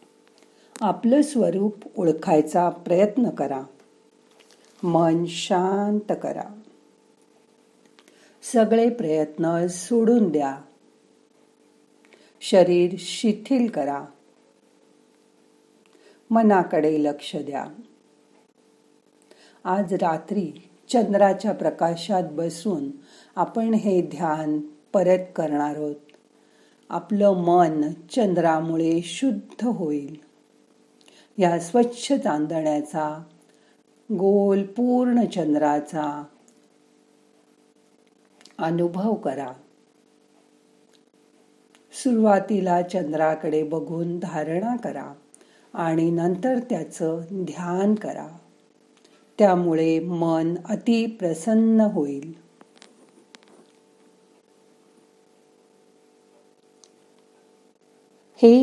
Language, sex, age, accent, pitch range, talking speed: Marathi, female, 50-69, native, 160-215 Hz, 60 wpm